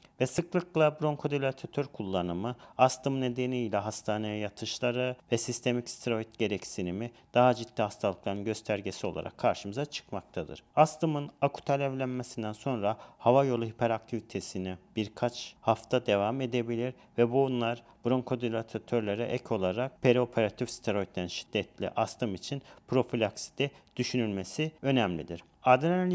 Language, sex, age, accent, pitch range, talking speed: Turkish, male, 40-59, native, 110-130 Hz, 100 wpm